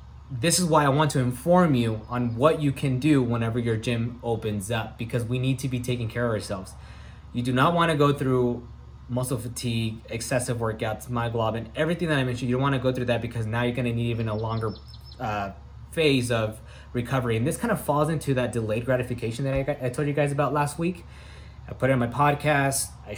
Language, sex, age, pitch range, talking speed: English, male, 20-39, 110-135 Hz, 230 wpm